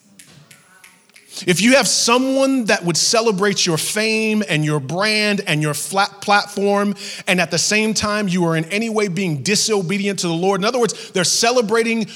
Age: 30-49